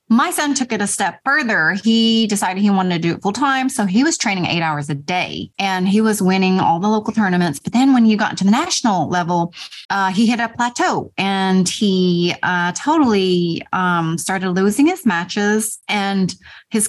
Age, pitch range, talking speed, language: 30-49, 190-255 Hz, 205 wpm, English